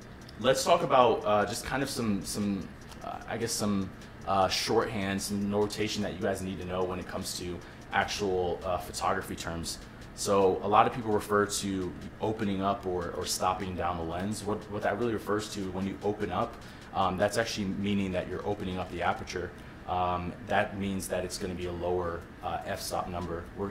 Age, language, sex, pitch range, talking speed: 20-39, English, male, 90-105 Hz, 200 wpm